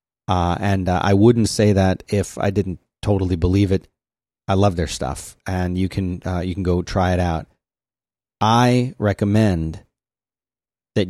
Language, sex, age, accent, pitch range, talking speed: English, male, 30-49, American, 90-110 Hz, 160 wpm